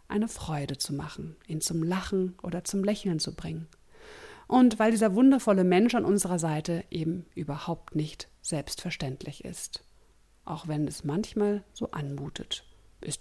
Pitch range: 160-215 Hz